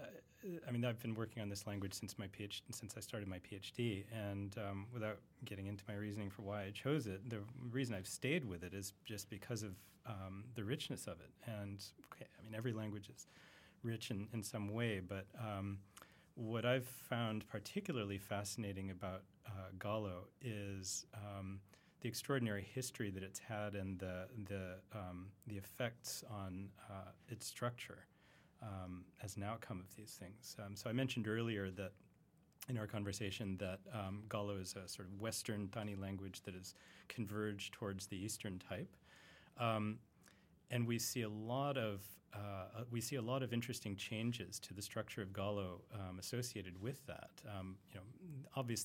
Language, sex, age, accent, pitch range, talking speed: English, male, 30-49, American, 95-115 Hz, 180 wpm